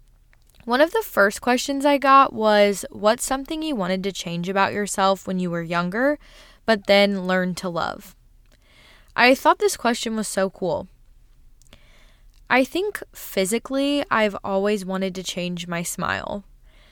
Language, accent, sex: English, American, female